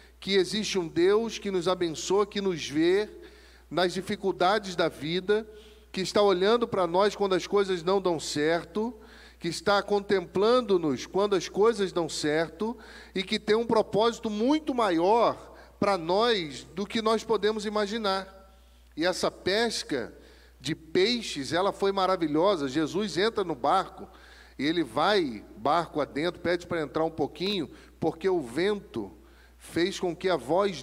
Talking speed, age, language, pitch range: 150 wpm, 40-59, Portuguese, 175-210 Hz